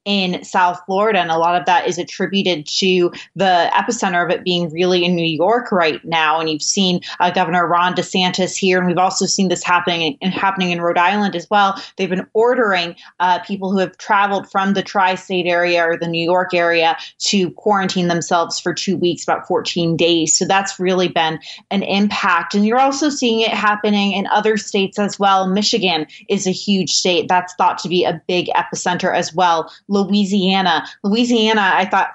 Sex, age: female, 20-39